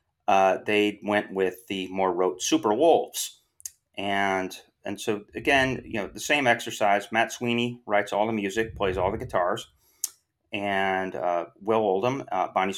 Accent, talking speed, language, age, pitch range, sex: American, 160 wpm, English, 30-49, 95-110 Hz, male